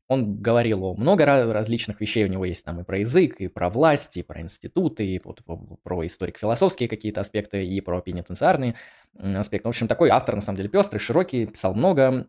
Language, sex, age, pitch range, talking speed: Russian, male, 20-39, 100-120 Hz, 185 wpm